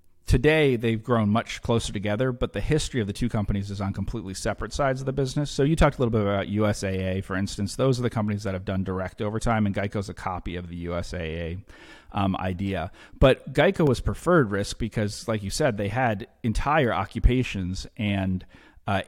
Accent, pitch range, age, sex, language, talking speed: American, 95-115 Hz, 40-59, male, English, 200 wpm